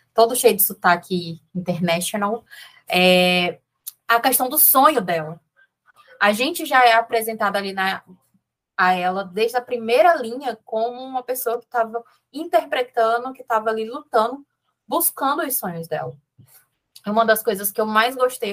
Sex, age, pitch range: female, 20-39, 185-235 Hz